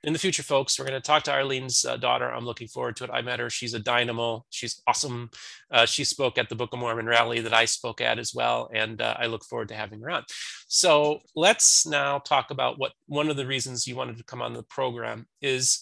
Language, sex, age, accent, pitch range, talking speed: English, male, 30-49, American, 120-150 Hz, 255 wpm